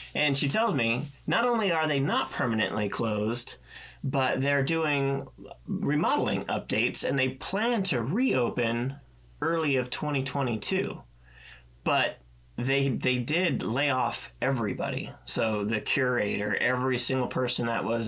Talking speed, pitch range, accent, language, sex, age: 130 wpm, 110-145 Hz, American, English, male, 30-49